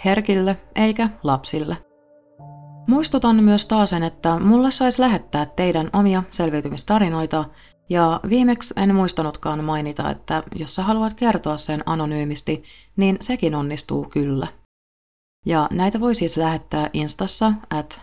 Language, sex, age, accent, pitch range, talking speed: Finnish, female, 30-49, native, 150-195 Hz, 115 wpm